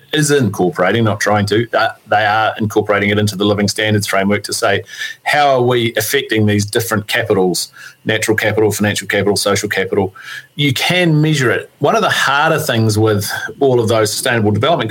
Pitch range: 110-125 Hz